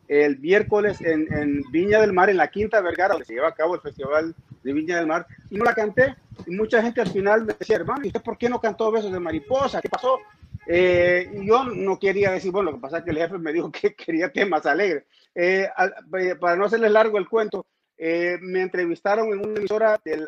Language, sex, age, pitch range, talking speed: Spanish, male, 40-59, 160-215 Hz, 240 wpm